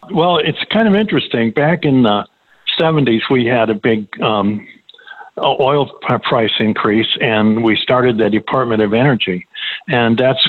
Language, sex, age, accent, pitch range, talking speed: English, male, 50-69, American, 105-125 Hz, 150 wpm